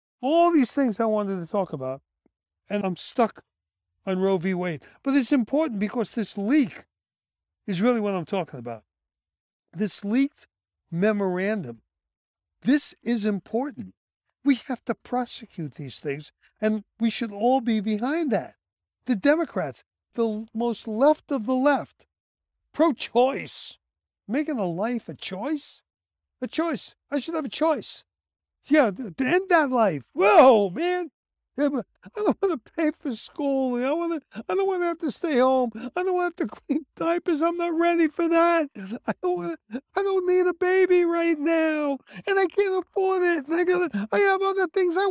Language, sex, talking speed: English, male, 170 wpm